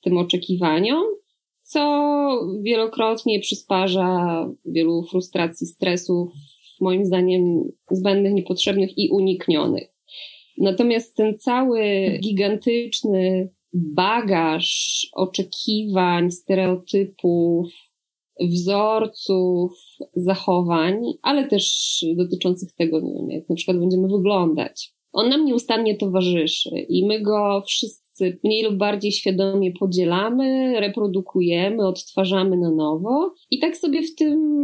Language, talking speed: Polish, 95 wpm